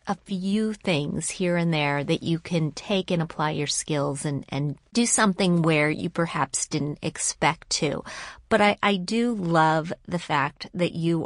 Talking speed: 175 wpm